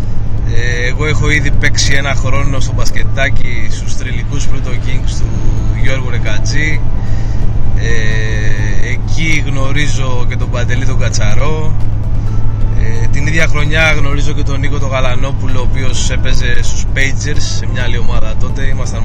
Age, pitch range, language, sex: 20-39, 105-115 Hz, Greek, male